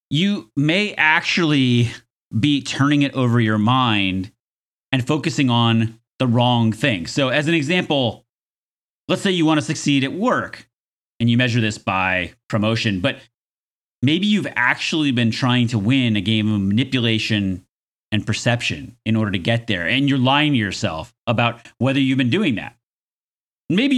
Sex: male